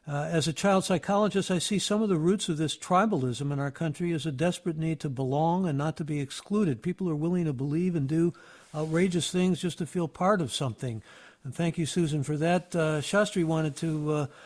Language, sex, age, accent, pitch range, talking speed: English, male, 60-79, American, 145-170 Hz, 225 wpm